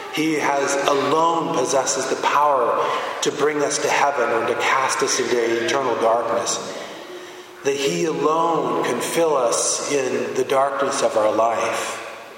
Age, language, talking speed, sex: 30-49, English, 145 wpm, male